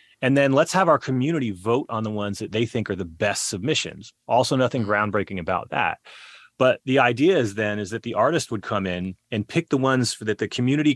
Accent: American